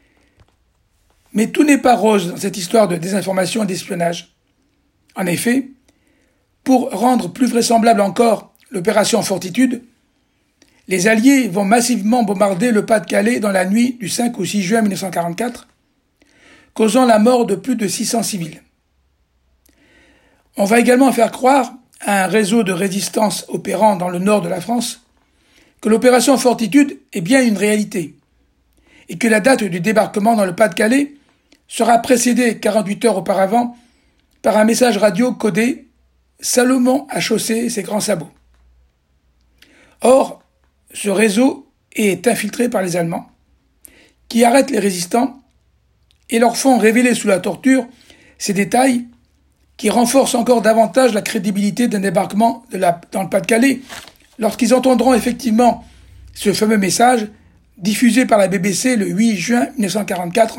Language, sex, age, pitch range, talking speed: French, male, 60-79, 195-245 Hz, 145 wpm